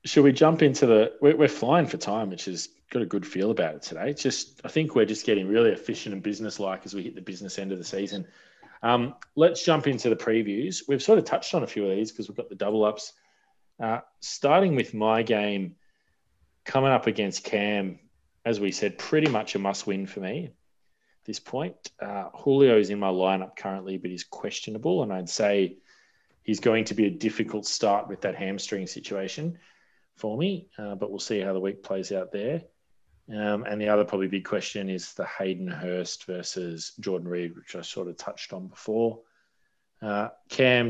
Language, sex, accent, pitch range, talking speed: English, male, Australian, 95-115 Hz, 200 wpm